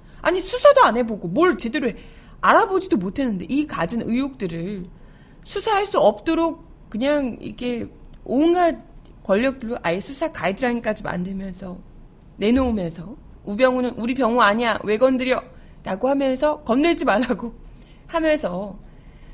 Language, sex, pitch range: Korean, female, 195-295 Hz